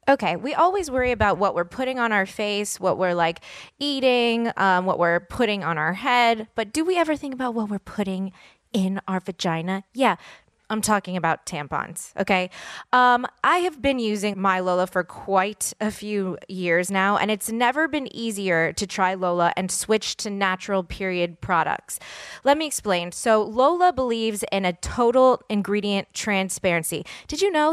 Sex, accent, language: female, American, English